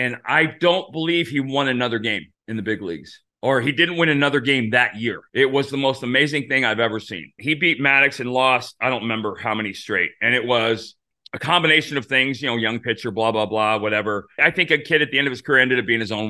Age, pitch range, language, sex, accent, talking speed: 30-49, 110-150 Hz, English, male, American, 260 wpm